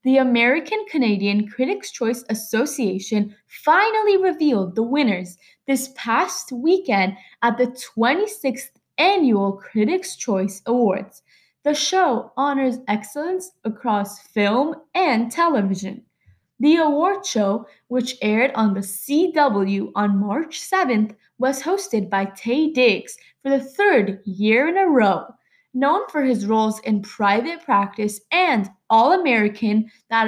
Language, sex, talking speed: English, female, 120 wpm